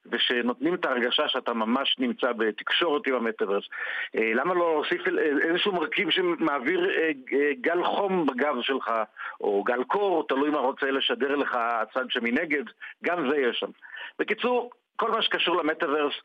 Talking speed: 150 wpm